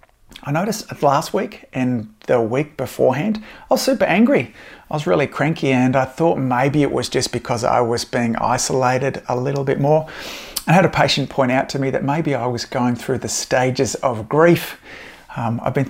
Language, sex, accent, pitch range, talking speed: English, male, Australian, 120-145 Hz, 200 wpm